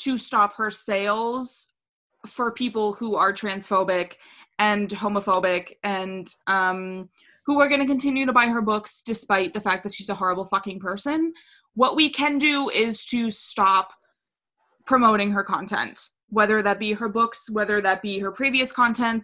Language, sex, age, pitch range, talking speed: English, female, 20-39, 200-250 Hz, 160 wpm